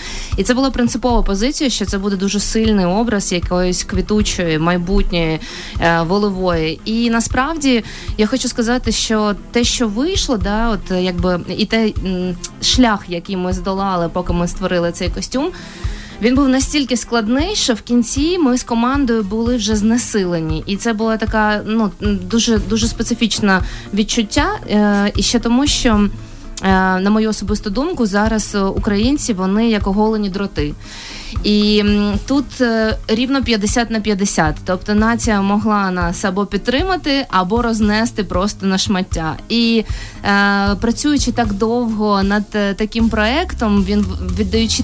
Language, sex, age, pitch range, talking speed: Ukrainian, female, 20-39, 195-235 Hz, 135 wpm